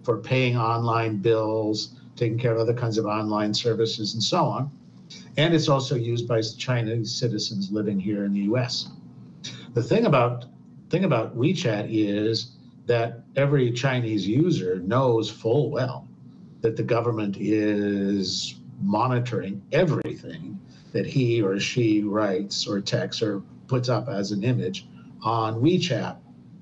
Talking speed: 140 wpm